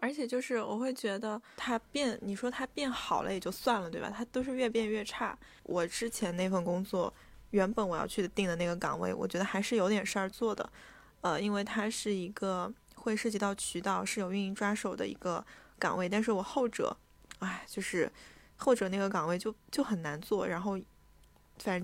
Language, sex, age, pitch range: Chinese, female, 20-39, 180-220 Hz